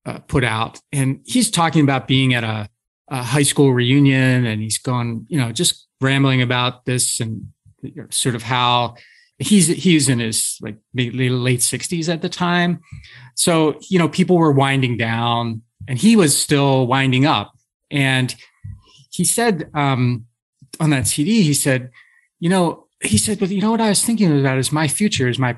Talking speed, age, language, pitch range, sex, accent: 180 wpm, 30-49, English, 120-160 Hz, male, American